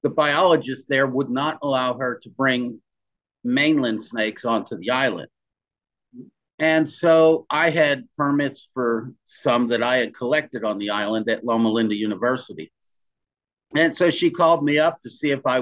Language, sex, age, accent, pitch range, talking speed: English, male, 50-69, American, 125-155 Hz, 160 wpm